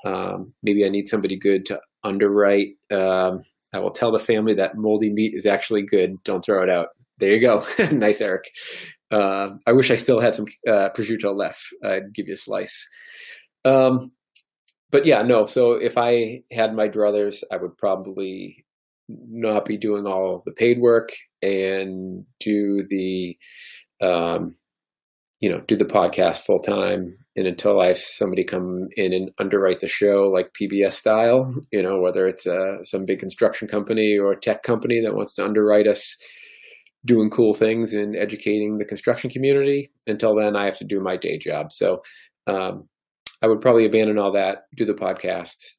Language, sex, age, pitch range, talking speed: English, male, 30-49, 95-110 Hz, 175 wpm